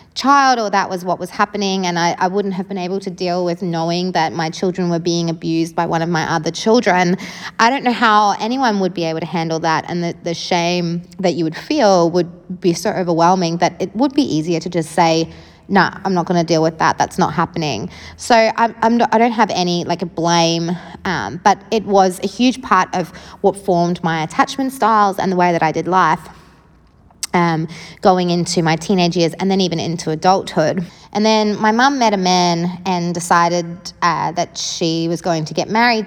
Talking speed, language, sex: 210 wpm, English, female